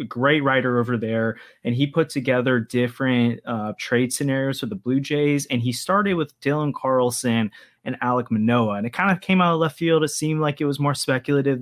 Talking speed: 210 wpm